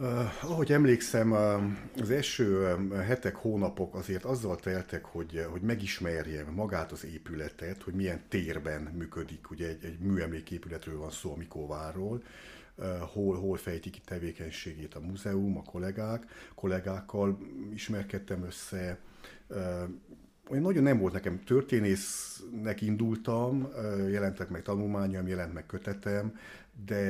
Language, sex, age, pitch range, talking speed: Hungarian, male, 60-79, 90-100 Hz, 125 wpm